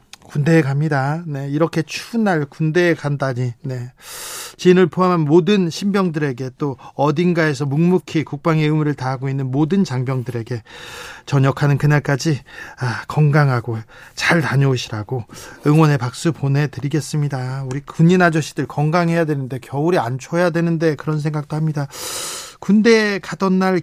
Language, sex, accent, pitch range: Korean, male, native, 140-175 Hz